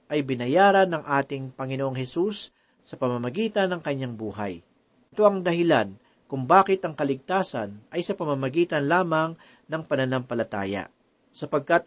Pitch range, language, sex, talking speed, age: 130-180 Hz, Filipino, male, 125 wpm, 40-59